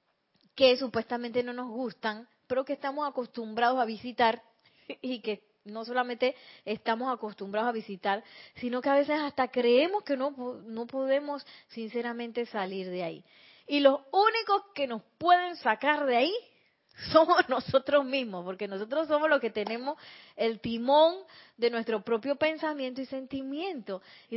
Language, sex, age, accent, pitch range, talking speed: Spanish, female, 30-49, American, 215-275 Hz, 150 wpm